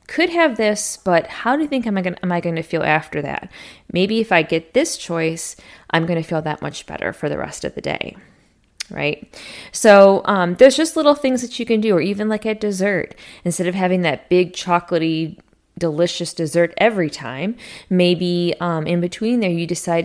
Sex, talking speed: female, 200 wpm